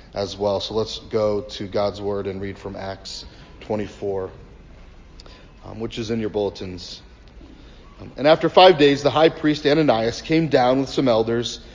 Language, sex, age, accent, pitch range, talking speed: English, male, 40-59, American, 110-160 Hz, 165 wpm